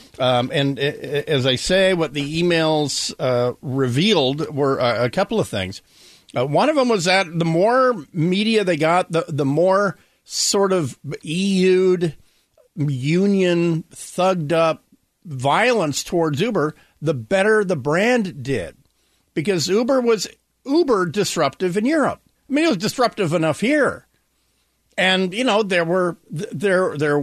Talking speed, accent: 145 wpm, American